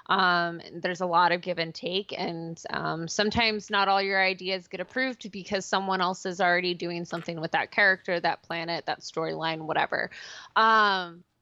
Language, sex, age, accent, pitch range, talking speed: English, female, 20-39, American, 170-200 Hz, 180 wpm